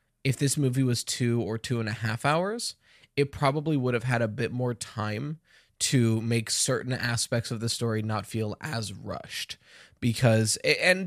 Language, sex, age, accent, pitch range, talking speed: English, male, 20-39, American, 115-140 Hz, 180 wpm